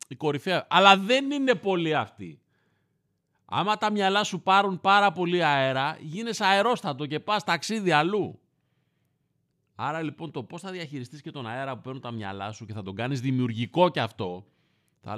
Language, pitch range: Greek, 120-170 Hz